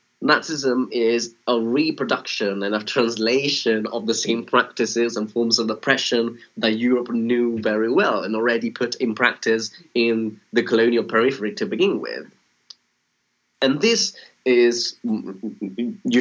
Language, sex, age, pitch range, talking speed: English, male, 30-49, 105-120 Hz, 135 wpm